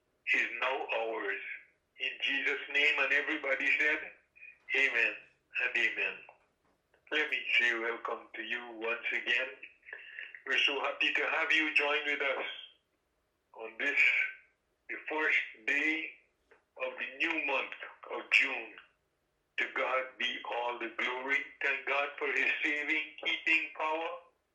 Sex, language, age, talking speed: male, English, 60-79, 130 wpm